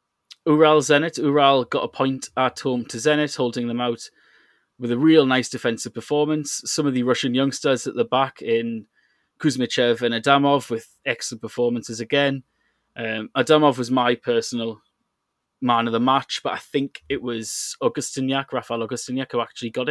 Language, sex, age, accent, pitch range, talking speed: English, male, 20-39, British, 120-150 Hz, 165 wpm